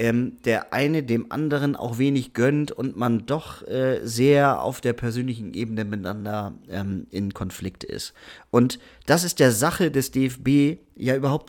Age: 40-59